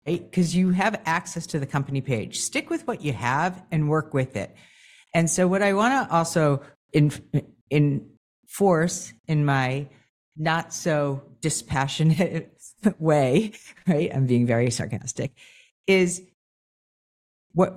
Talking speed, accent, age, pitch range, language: 130 wpm, American, 50-69, 150-215 Hz, English